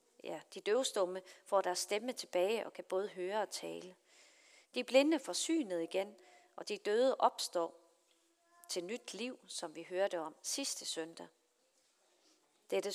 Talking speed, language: 150 wpm, Danish